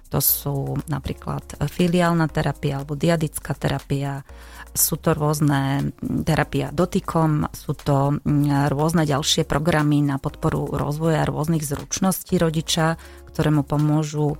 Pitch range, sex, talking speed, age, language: 145-165 Hz, female, 115 wpm, 30-49, Slovak